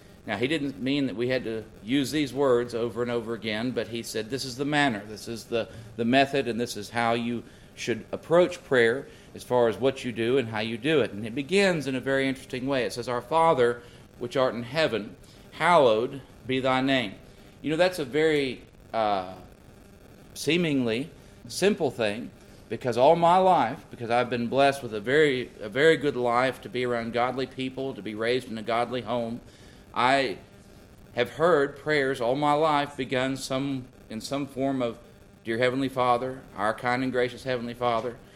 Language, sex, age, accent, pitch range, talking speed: English, male, 50-69, American, 115-145 Hz, 195 wpm